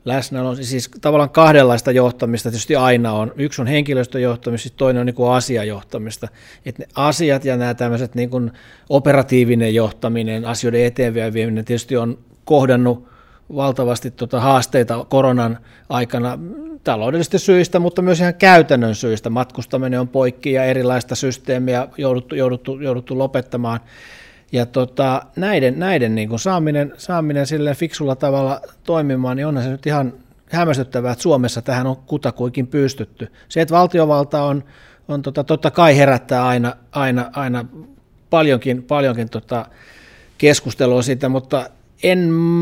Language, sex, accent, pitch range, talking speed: Finnish, male, native, 125-150 Hz, 130 wpm